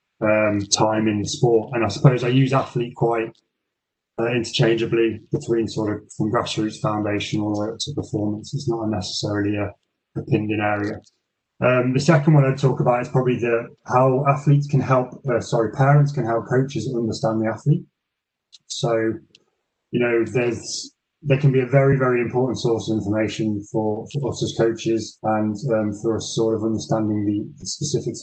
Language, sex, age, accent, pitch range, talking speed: English, male, 20-39, British, 110-130 Hz, 180 wpm